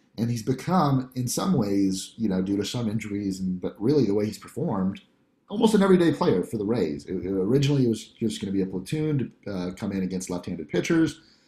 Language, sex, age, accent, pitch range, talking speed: English, male, 30-49, American, 100-150 Hz, 230 wpm